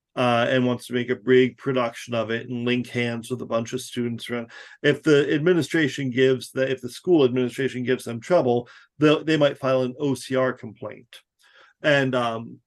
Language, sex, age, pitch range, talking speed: English, male, 40-59, 125-150 Hz, 185 wpm